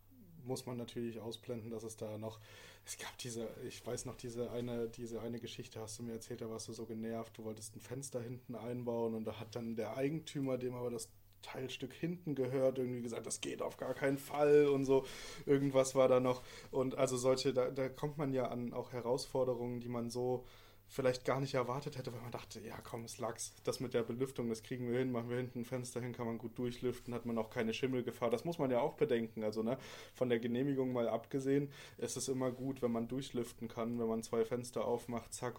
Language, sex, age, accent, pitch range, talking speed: German, male, 20-39, German, 110-125 Hz, 230 wpm